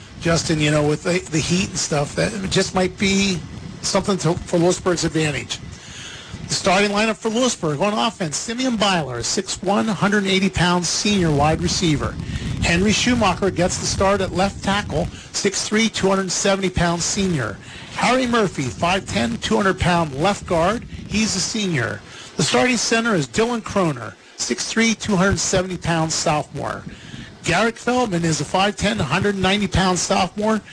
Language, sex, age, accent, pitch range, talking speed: English, male, 50-69, American, 160-205 Hz, 135 wpm